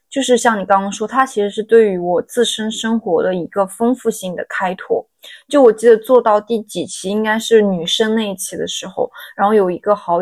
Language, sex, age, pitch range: Chinese, female, 20-39, 195-235 Hz